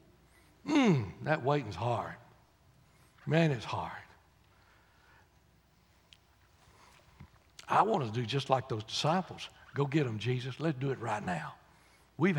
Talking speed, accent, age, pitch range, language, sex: 120 wpm, American, 60-79, 115-155 Hz, English, male